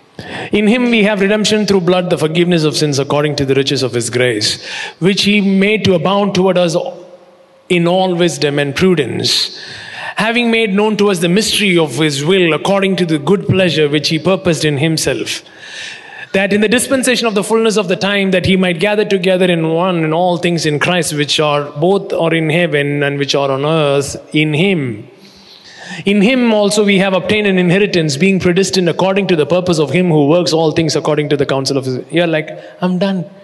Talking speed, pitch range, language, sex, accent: 205 wpm, 145-195 Hz, English, male, Indian